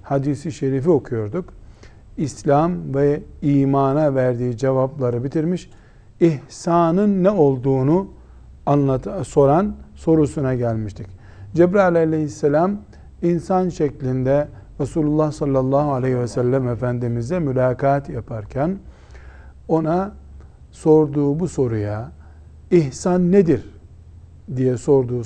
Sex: male